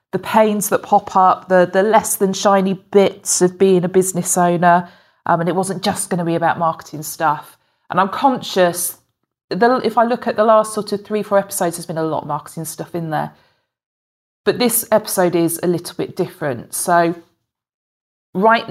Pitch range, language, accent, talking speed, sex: 170-200 Hz, English, British, 195 wpm, female